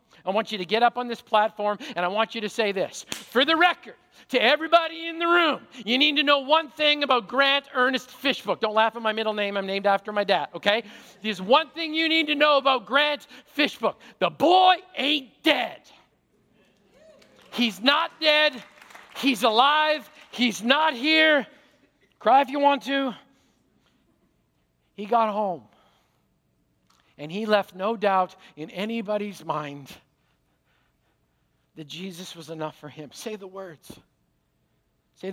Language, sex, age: English, male, 50-69